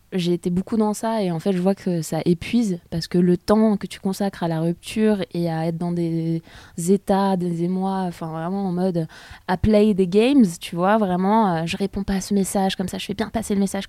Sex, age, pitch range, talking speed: female, 20-39, 175-210 Hz, 255 wpm